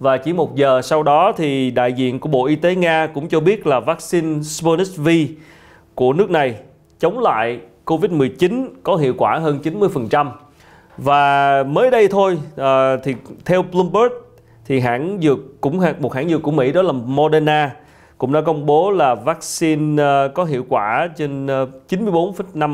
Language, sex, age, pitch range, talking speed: Vietnamese, male, 30-49, 130-175 Hz, 170 wpm